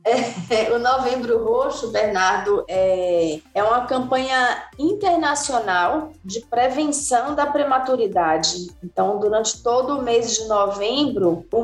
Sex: female